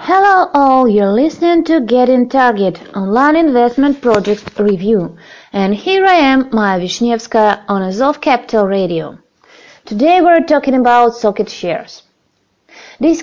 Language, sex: Russian, female